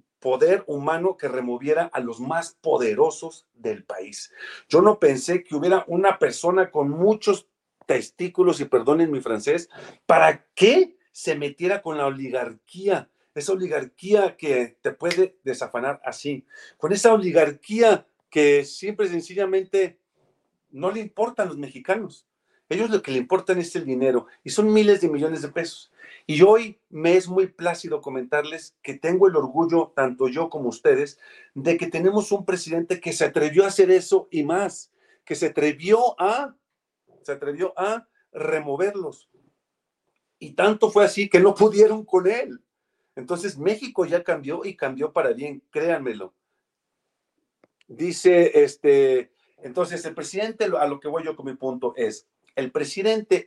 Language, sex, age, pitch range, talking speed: Spanish, male, 50-69, 160-215 Hz, 150 wpm